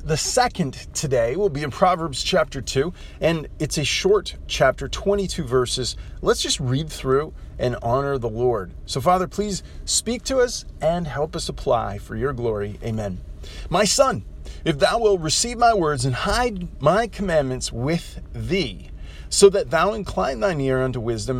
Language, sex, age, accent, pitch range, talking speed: English, male, 40-59, American, 125-190 Hz, 170 wpm